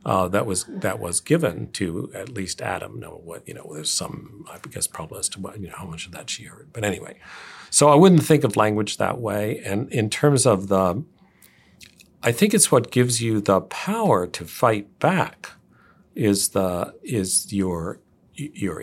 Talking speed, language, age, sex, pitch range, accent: 200 wpm, English, 50-69, male, 95-130 Hz, American